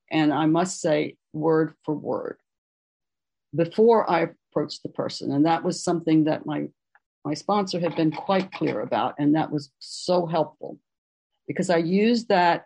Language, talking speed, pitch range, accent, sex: English, 160 wpm, 155-195 Hz, American, female